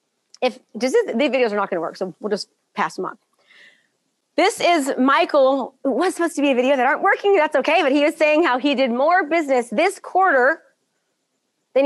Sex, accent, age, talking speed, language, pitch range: female, American, 30-49, 215 wpm, English, 255-345 Hz